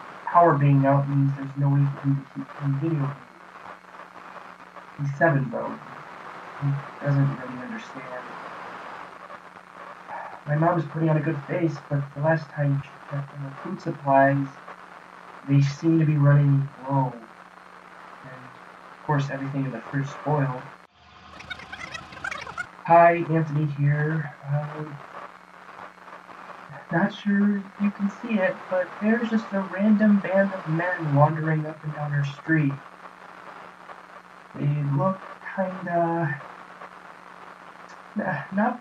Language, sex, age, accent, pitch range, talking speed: English, male, 20-39, American, 140-170 Hz, 120 wpm